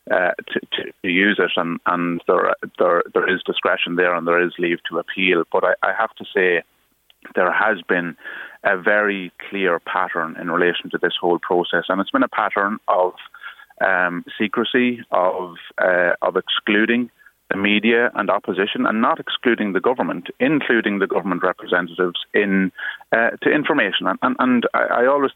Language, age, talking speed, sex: English, 30-49, 175 wpm, male